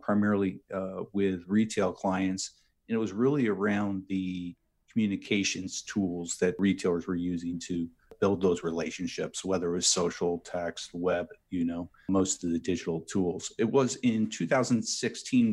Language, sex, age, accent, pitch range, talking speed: English, male, 50-69, American, 95-110 Hz, 145 wpm